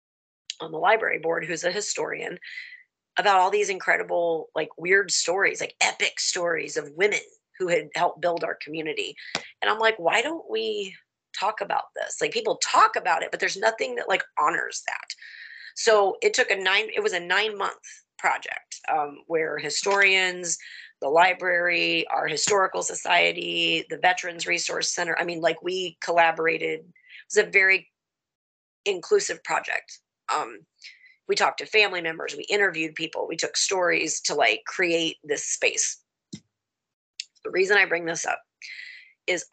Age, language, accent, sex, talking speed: 30-49, English, American, female, 160 wpm